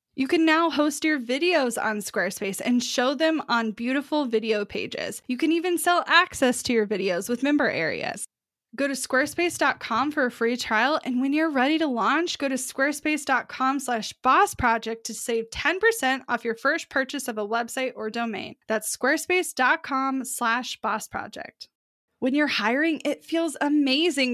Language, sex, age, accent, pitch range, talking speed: English, female, 10-29, American, 220-285 Hz, 155 wpm